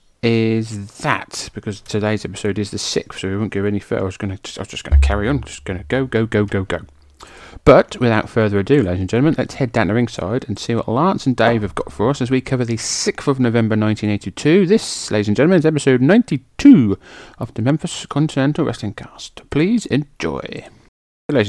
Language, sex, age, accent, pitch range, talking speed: English, male, 30-49, British, 100-130 Hz, 220 wpm